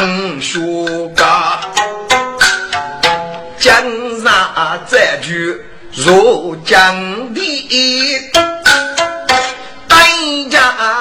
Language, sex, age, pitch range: Chinese, male, 50-69, 245-340 Hz